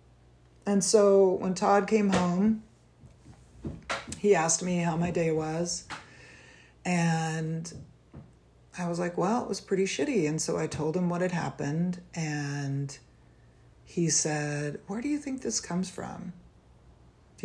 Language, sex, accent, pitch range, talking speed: English, female, American, 140-190 Hz, 140 wpm